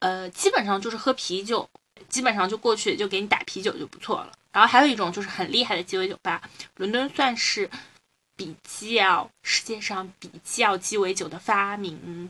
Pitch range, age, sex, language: 190-265 Hz, 20-39, female, Chinese